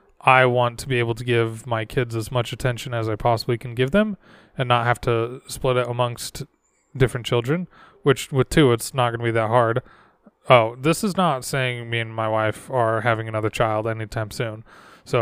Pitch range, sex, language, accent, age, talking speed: 115-135 Hz, male, English, American, 20-39, 210 wpm